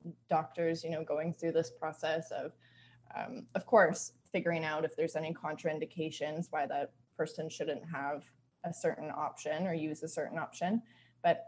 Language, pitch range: English, 160-205 Hz